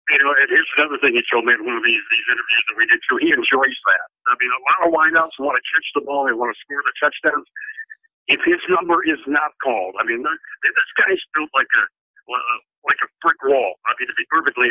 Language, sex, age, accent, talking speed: English, male, 60-79, American, 255 wpm